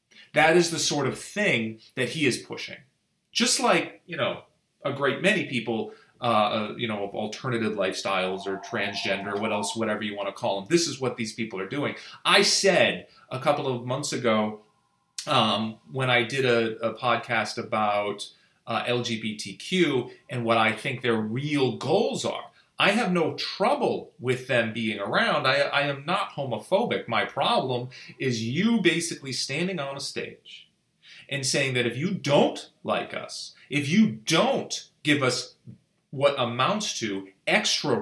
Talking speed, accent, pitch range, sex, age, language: 165 wpm, American, 115-150 Hz, male, 30-49, English